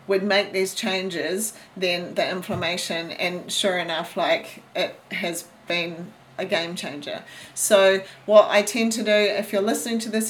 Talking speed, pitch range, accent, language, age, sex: 165 wpm, 180-210 Hz, Australian, English, 40-59, female